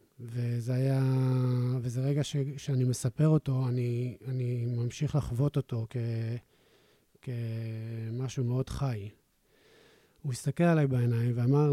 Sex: male